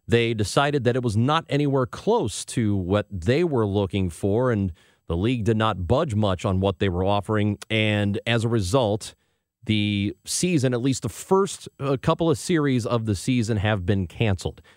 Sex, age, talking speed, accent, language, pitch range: male, 40-59, 185 wpm, American, English, 100-135 Hz